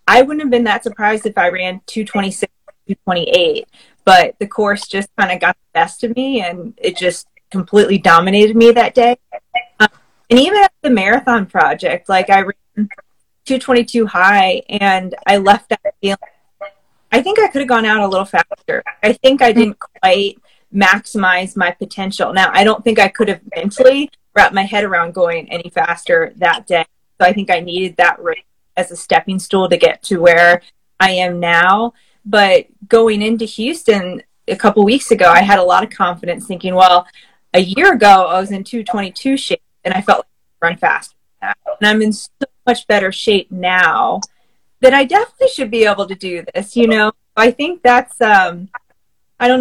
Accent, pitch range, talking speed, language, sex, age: American, 190-245 Hz, 185 wpm, English, female, 30-49